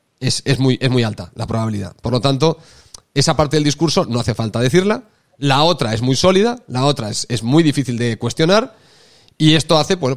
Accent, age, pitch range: Spanish, 30-49, 130-170 Hz